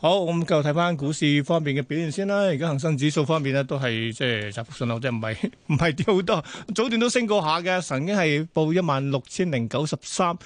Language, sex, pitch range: Chinese, male, 130-170 Hz